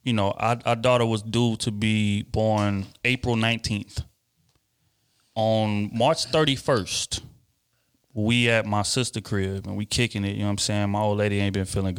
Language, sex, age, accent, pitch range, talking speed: English, male, 30-49, American, 105-145 Hz, 175 wpm